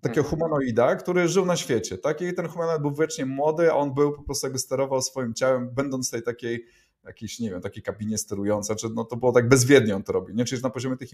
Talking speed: 240 wpm